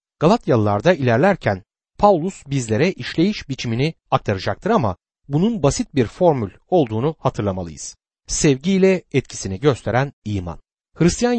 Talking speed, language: 100 wpm, Turkish